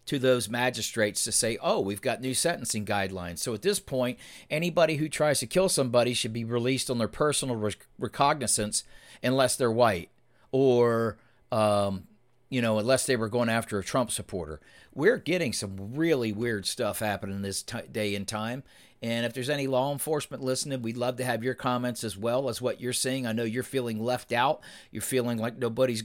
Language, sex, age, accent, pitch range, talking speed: English, male, 50-69, American, 110-140 Hz, 195 wpm